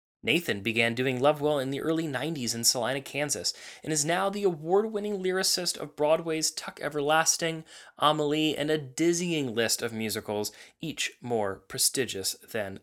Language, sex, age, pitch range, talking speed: English, male, 20-39, 115-170 Hz, 150 wpm